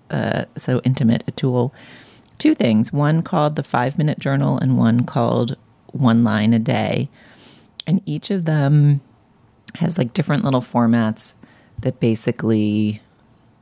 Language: English